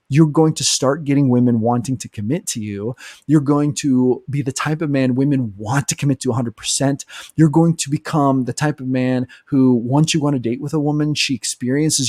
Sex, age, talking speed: male, 30-49, 225 wpm